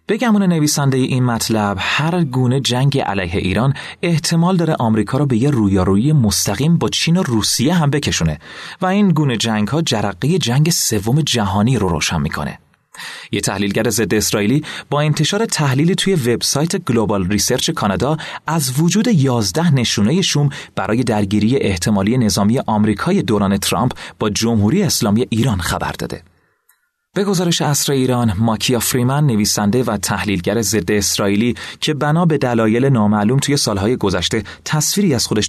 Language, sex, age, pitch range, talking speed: Persian, male, 30-49, 105-155 Hz, 145 wpm